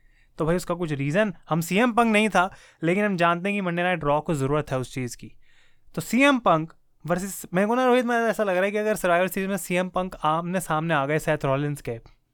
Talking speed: 265 wpm